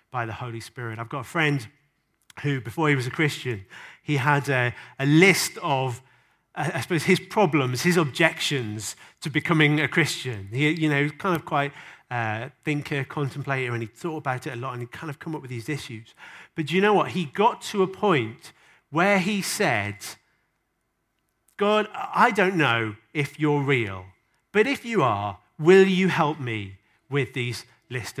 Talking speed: 190 wpm